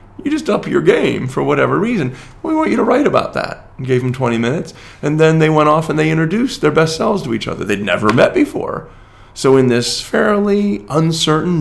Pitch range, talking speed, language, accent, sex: 110-160 Hz, 215 wpm, English, American, male